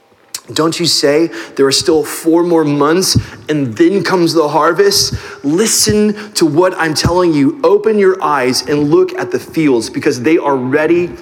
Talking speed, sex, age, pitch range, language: 170 wpm, male, 30-49, 150-235 Hz, English